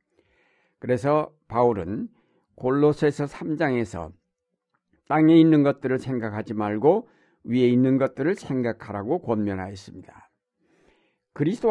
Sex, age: male, 60-79